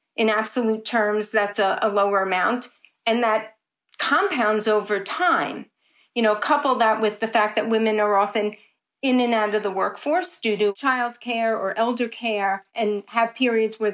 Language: English